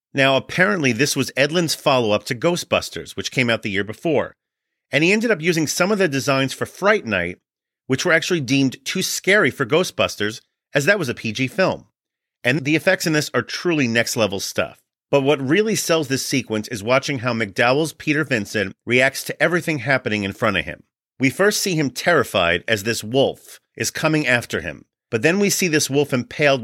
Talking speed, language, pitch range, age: 200 wpm, English, 115-155 Hz, 40-59